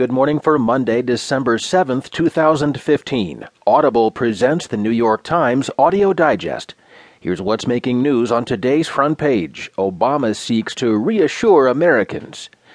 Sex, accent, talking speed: male, American, 130 wpm